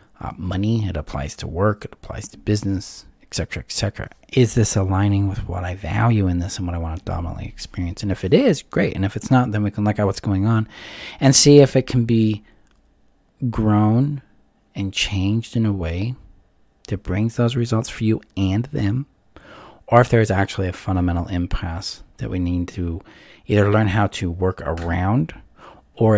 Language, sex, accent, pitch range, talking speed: English, male, American, 90-115 Hz, 195 wpm